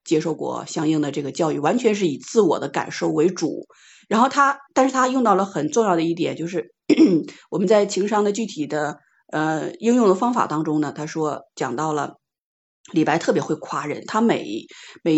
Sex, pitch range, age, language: female, 155-210 Hz, 30-49, Chinese